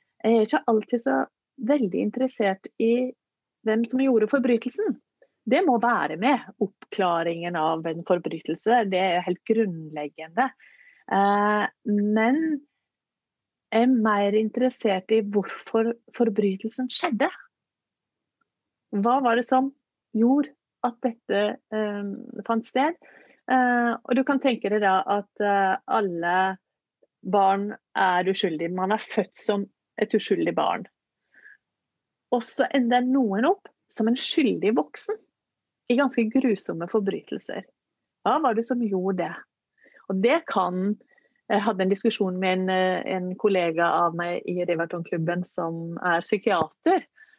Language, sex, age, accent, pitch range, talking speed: Swedish, female, 30-49, native, 185-245 Hz, 125 wpm